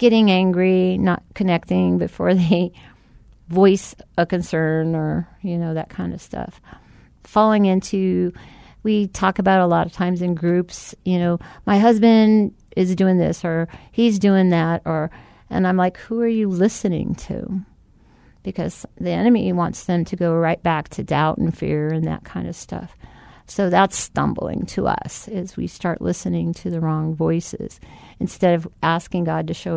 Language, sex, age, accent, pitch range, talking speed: English, female, 50-69, American, 165-190 Hz, 170 wpm